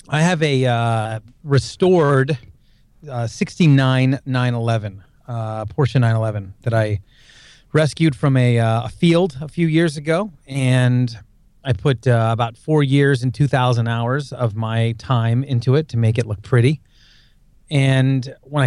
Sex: male